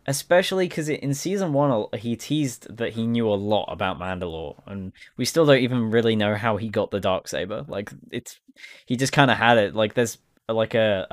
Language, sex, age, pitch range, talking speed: English, male, 10-29, 100-125 Hz, 205 wpm